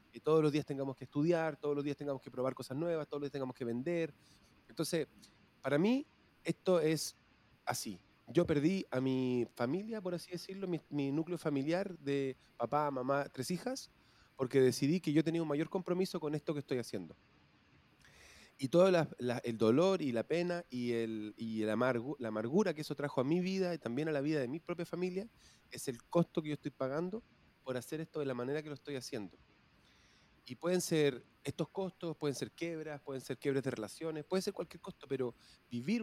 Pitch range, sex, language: 130-175 Hz, male, Spanish